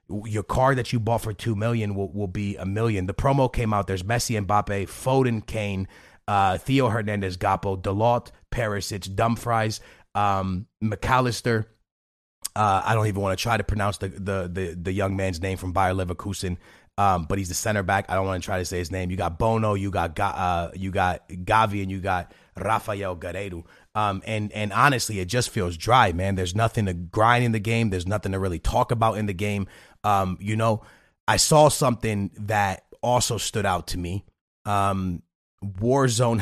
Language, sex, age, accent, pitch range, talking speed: English, male, 30-49, American, 95-110 Hz, 200 wpm